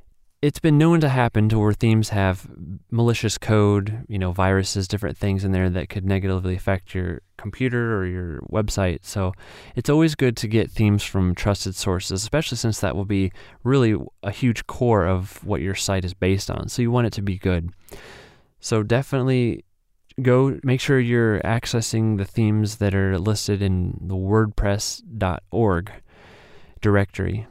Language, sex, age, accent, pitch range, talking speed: English, male, 30-49, American, 95-115 Hz, 165 wpm